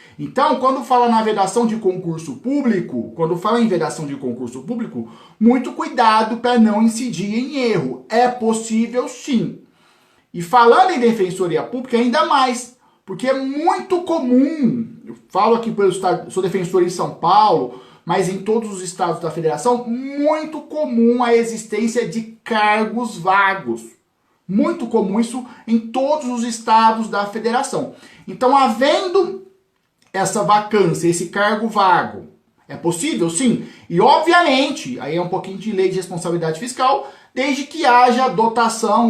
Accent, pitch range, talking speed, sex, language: Brazilian, 190-260 Hz, 145 wpm, male, Portuguese